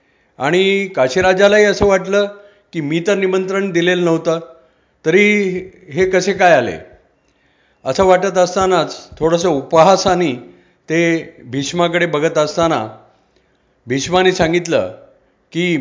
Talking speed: 105 wpm